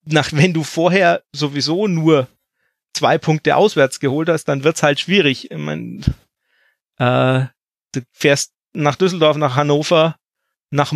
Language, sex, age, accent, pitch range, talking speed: German, male, 40-59, German, 135-160 Hz, 140 wpm